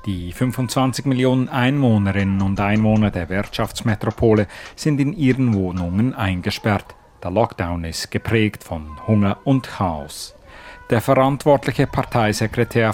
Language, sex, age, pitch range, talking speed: German, male, 40-59, 100-125 Hz, 110 wpm